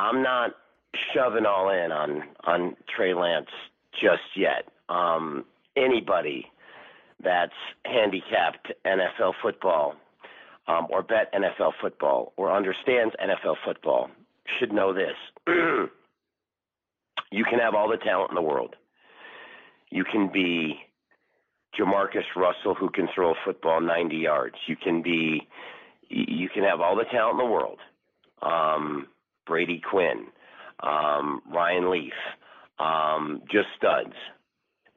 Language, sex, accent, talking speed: English, male, American, 125 wpm